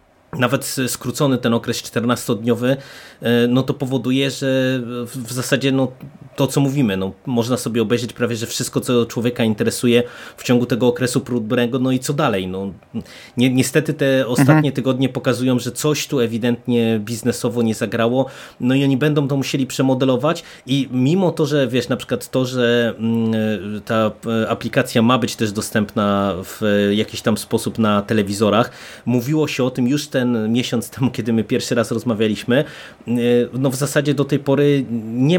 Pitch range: 115-135 Hz